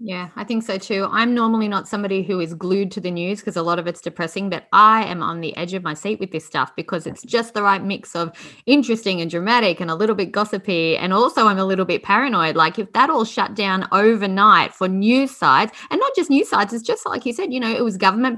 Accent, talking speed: Australian, 260 wpm